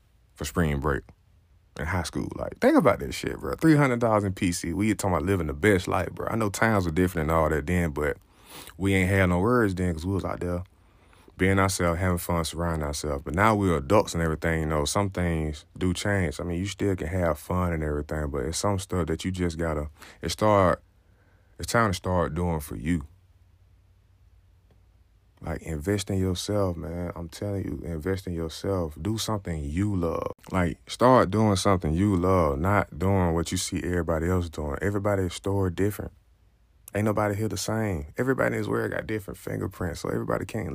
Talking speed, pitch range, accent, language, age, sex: 200 wpm, 85-95 Hz, American, English, 20-39, male